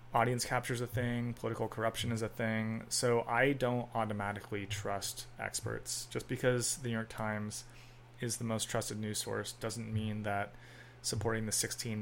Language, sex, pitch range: English, male, 110-125 Hz